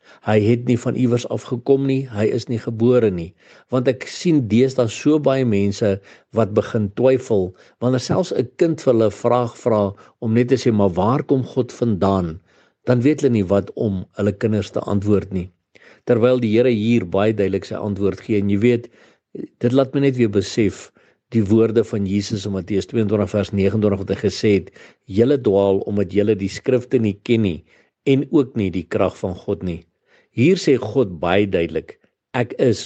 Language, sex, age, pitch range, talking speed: English, male, 50-69, 100-125 Hz, 190 wpm